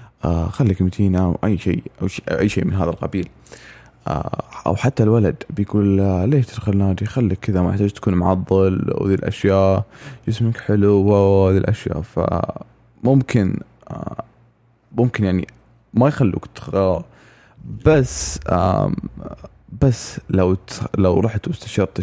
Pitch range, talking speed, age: 95-120 Hz, 120 wpm, 20-39